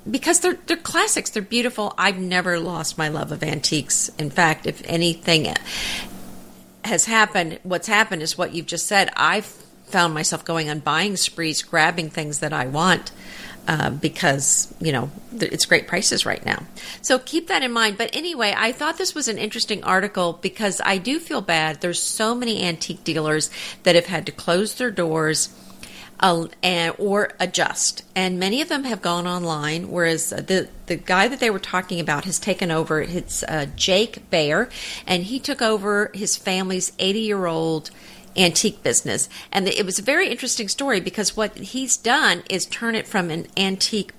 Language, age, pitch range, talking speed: English, 50-69, 170-220 Hz, 175 wpm